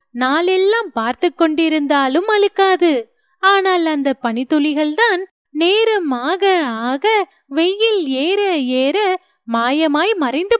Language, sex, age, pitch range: Tamil, female, 30-49, 285-390 Hz